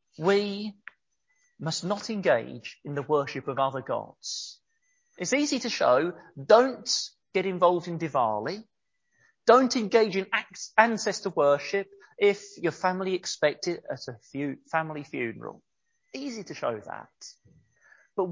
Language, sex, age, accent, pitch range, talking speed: English, male, 40-59, British, 170-275 Hz, 125 wpm